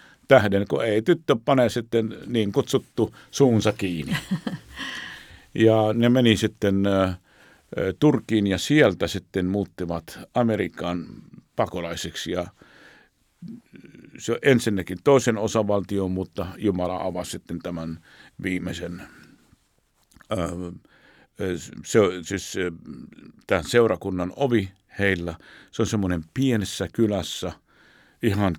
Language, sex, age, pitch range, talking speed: Finnish, male, 50-69, 95-115 Hz, 95 wpm